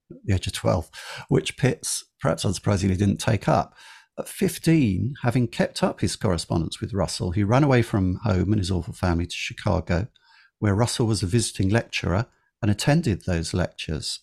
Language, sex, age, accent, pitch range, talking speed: English, male, 50-69, British, 95-125 Hz, 175 wpm